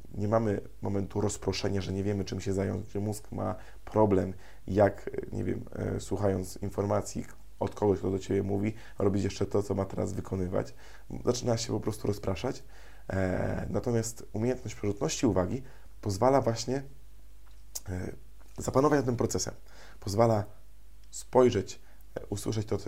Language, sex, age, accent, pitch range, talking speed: Polish, male, 20-39, native, 95-115 Hz, 135 wpm